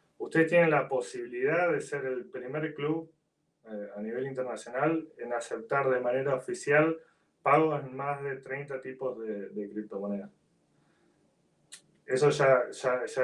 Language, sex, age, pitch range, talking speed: Spanish, male, 20-39, 125-150 Hz, 135 wpm